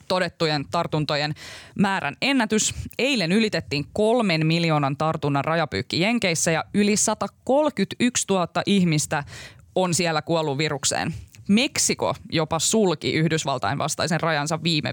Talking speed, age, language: 110 wpm, 20-39, Finnish